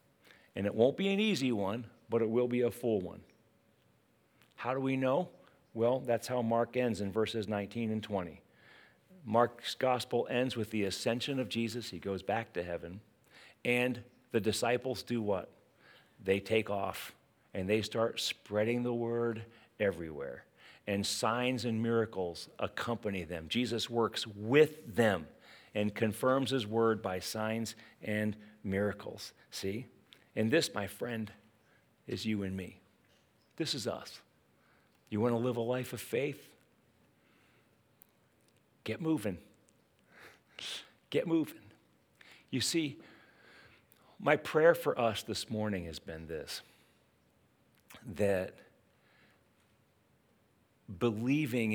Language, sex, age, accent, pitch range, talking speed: English, male, 40-59, American, 100-120 Hz, 130 wpm